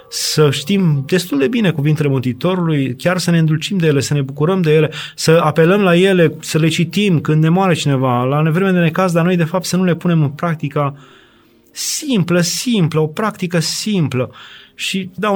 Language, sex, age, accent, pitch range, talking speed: Romanian, male, 30-49, native, 140-180 Hz, 195 wpm